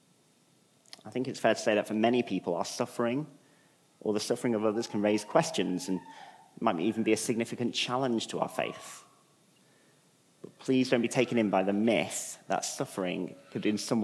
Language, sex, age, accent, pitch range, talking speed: English, male, 30-49, British, 100-125 Hz, 190 wpm